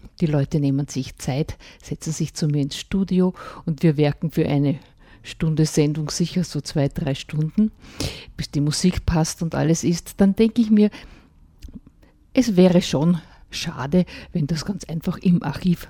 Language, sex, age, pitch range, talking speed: German, female, 50-69, 150-185 Hz, 165 wpm